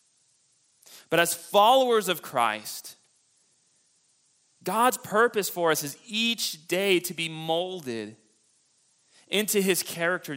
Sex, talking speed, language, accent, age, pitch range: male, 105 wpm, English, American, 30-49, 145-200 Hz